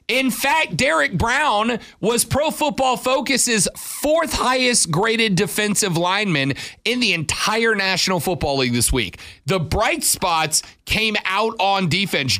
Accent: American